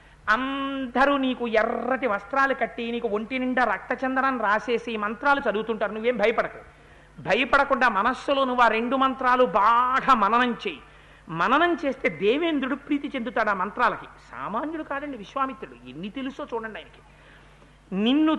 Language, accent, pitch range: Telugu, native, 220-280 Hz